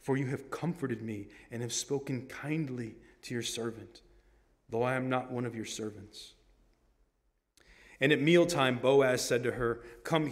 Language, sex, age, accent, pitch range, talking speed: English, male, 30-49, American, 125-170 Hz, 165 wpm